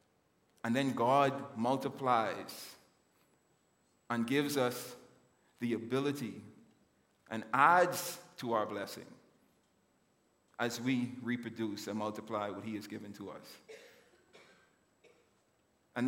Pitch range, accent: 115-150 Hz, American